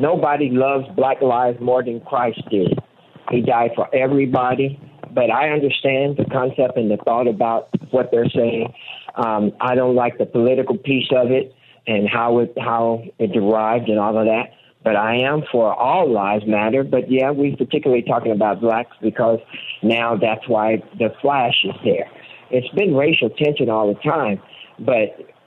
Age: 50-69